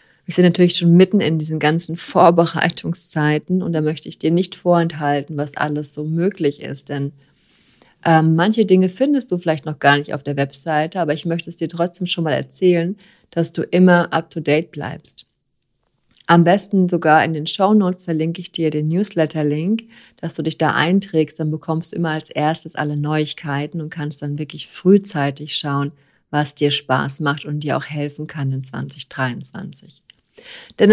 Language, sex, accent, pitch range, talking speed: German, female, German, 150-180 Hz, 175 wpm